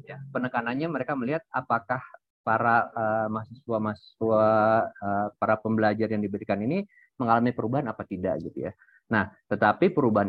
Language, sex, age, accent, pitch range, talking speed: Indonesian, male, 20-39, native, 110-130 Hz, 135 wpm